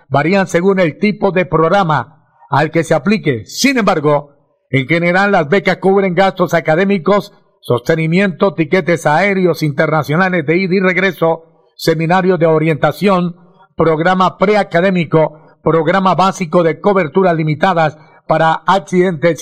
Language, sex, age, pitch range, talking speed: Spanish, male, 50-69, 160-195 Hz, 120 wpm